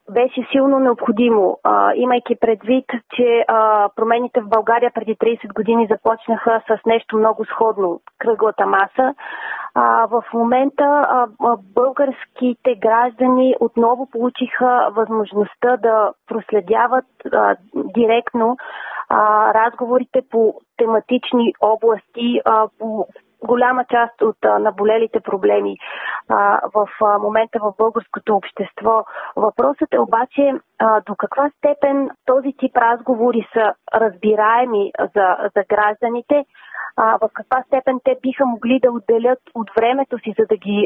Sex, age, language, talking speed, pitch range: female, 30-49, Bulgarian, 115 wpm, 220-250 Hz